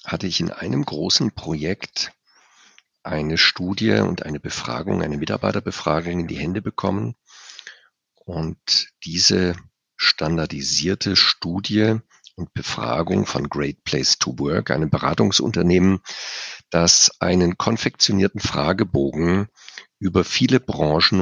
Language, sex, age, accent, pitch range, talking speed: German, male, 50-69, German, 85-110 Hz, 105 wpm